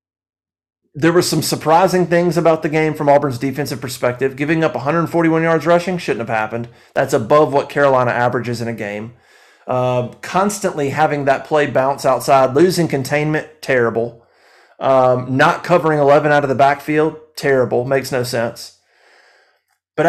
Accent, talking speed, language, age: American, 150 wpm, English, 30-49